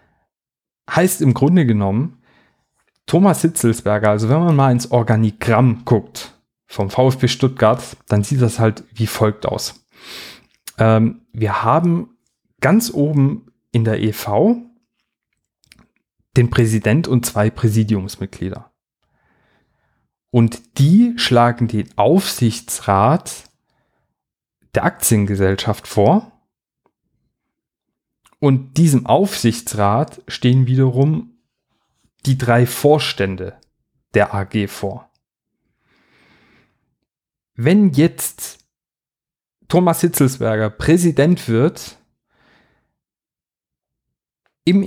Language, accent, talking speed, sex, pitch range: German, German, 80 wpm, male, 110-155 Hz